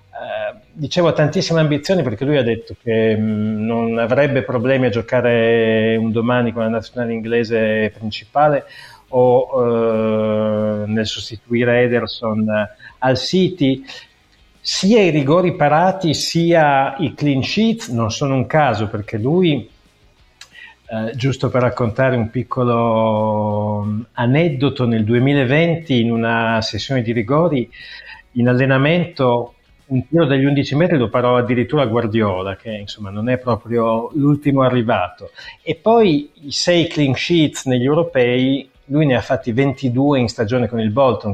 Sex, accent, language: male, native, Italian